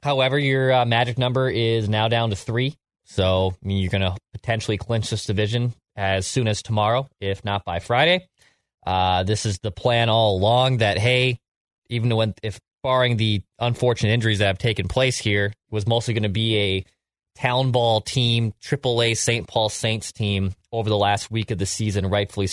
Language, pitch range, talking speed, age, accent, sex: English, 95-120 Hz, 195 wpm, 20-39, American, male